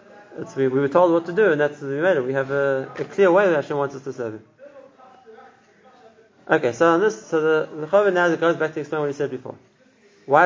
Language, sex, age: English, male, 30-49